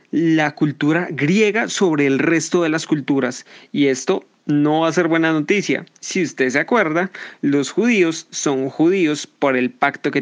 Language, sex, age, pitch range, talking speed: English, male, 30-49, 140-195 Hz, 170 wpm